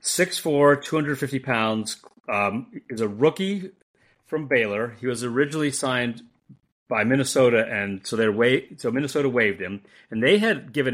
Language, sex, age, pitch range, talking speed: English, male, 30-49, 105-140 Hz, 155 wpm